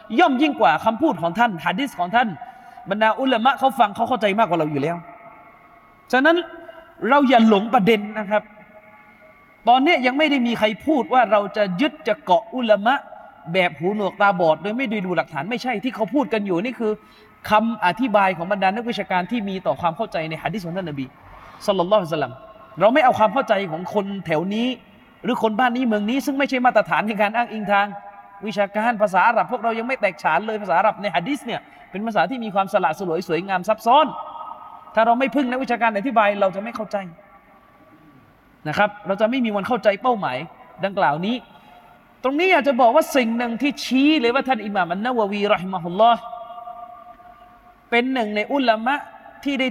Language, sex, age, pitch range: Thai, male, 30-49, 195-250 Hz